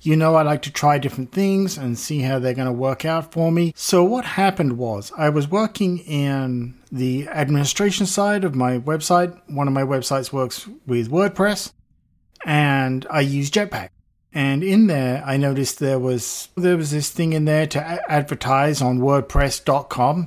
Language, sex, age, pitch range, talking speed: English, male, 50-69, 125-160 Hz, 180 wpm